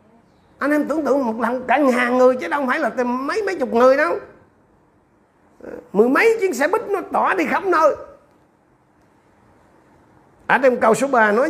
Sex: male